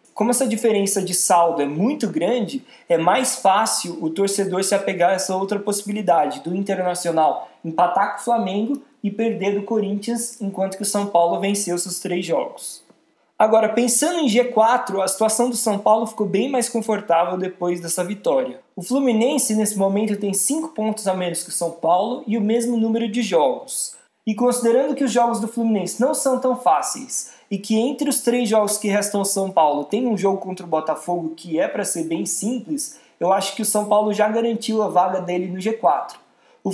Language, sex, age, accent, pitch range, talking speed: Portuguese, male, 20-39, Brazilian, 190-240 Hz, 195 wpm